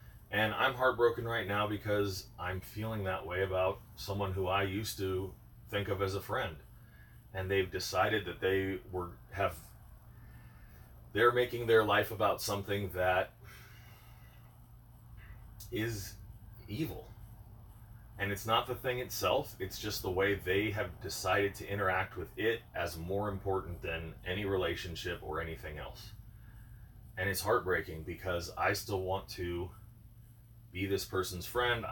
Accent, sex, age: American, male, 30-49